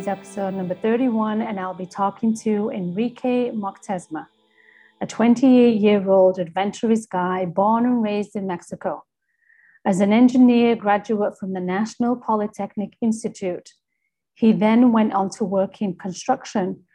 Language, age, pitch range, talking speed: English, 40-59, 195-240 Hz, 125 wpm